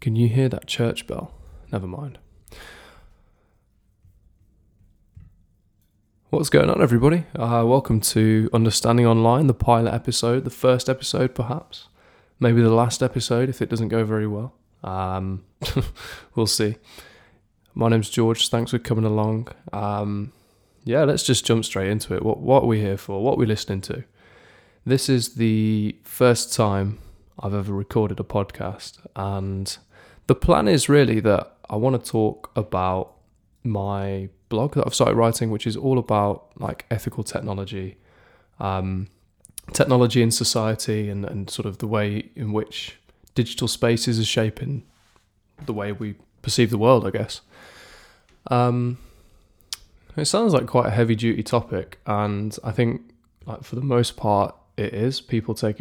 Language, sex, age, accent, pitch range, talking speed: English, male, 20-39, British, 100-120 Hz, 155 wpm